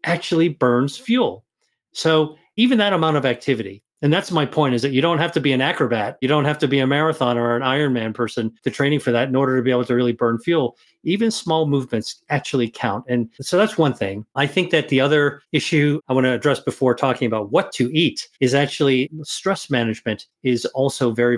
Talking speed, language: 220 wpm, English